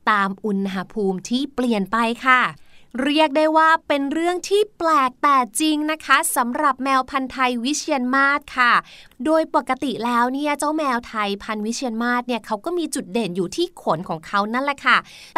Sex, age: female, 20-39